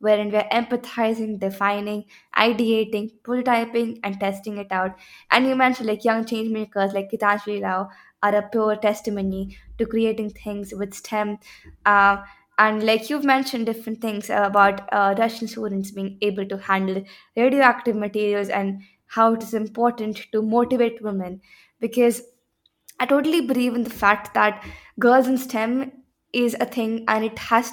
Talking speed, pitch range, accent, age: 150 wpm, 205-240 Hz, Indian, 20-39